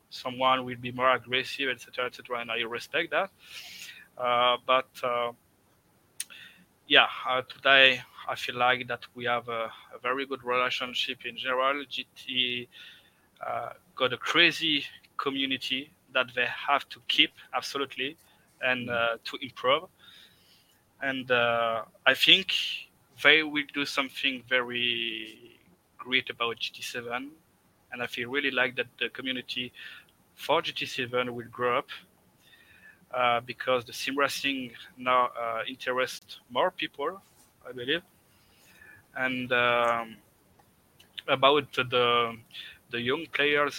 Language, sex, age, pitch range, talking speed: English, male, 20-39, 120-130 Hz, 130 wpm